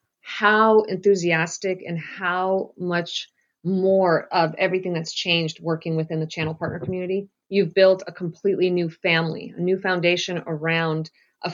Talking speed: 140 wpm